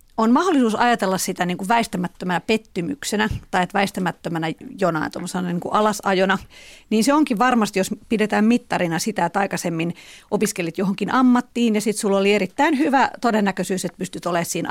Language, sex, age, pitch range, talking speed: Finnish, female, 40-59, 185-230 Hz, 150 wpm